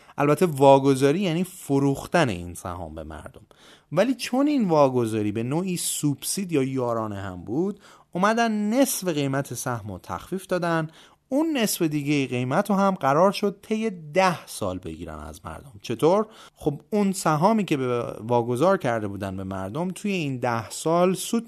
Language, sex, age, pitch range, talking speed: Persian, male, 30-49, 125-195 Hz, 150 wpm